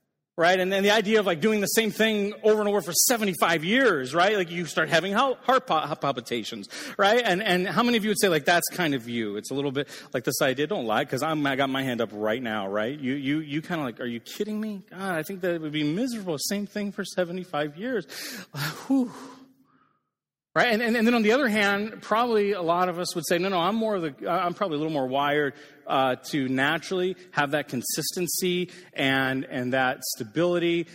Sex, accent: male, American